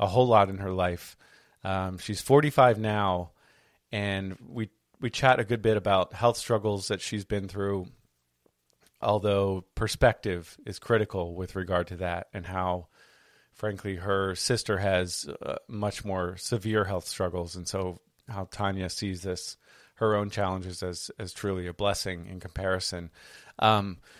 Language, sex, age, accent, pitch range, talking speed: English, male, 30-49, American, 95-110 Hz, 150 wpm